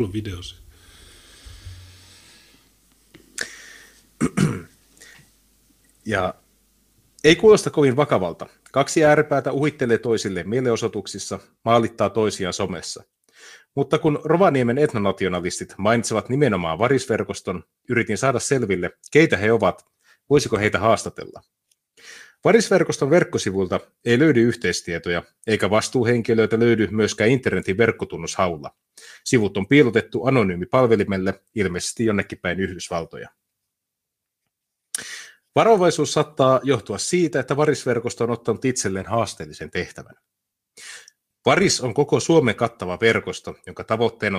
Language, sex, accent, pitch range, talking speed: Finnish, male, native, 95-135 Hz, 95 wpm